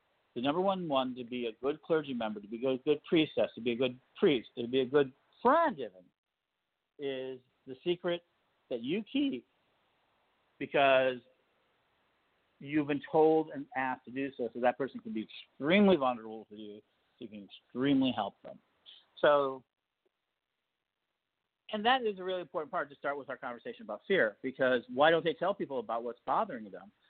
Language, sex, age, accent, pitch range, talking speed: English, male, 50-69, American, 115-145 Hz, 180 wpm